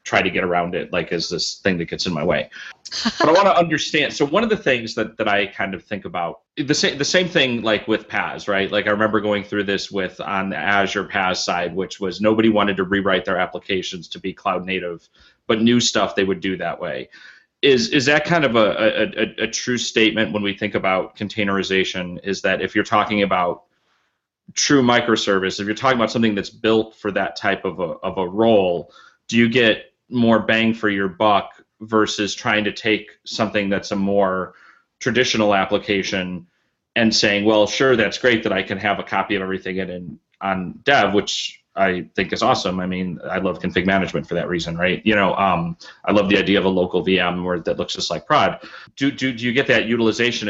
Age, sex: 30-49, male